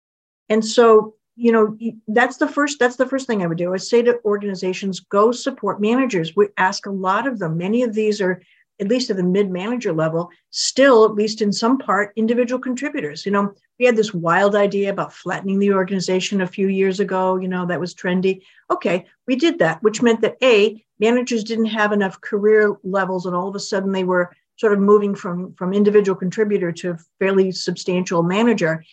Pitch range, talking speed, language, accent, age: 180-225 Hz, 200 wpm, English, American, 50-69